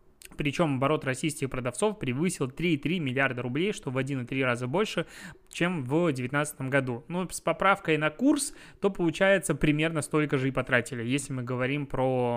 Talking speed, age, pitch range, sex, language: 165 wpm, 20-39, 135-175 Hz, male, Russian